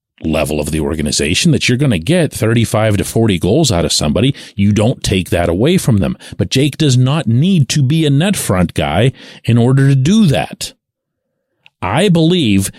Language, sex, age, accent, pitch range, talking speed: English, male, 40-59, American, 115-190 Hz, 190 wpm